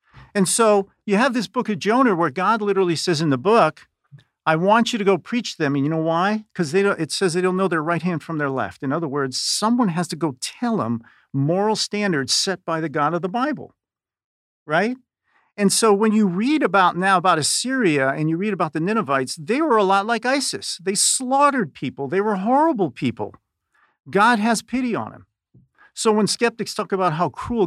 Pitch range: 150-210 Hz